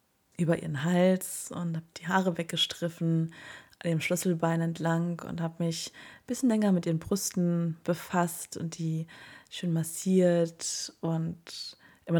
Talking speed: 140 wpm